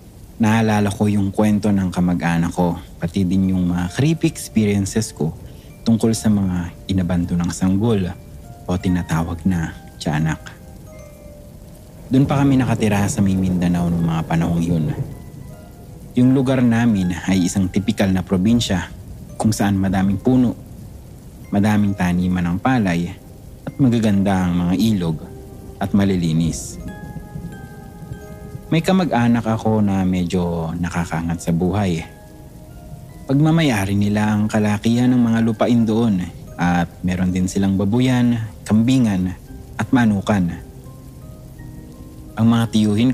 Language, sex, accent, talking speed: English, male, Filipino, 120 wpm